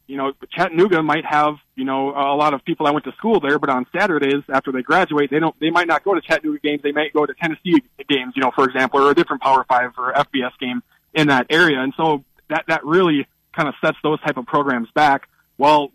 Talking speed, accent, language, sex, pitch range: 250 wpm, American, English, male, 135-160 Hz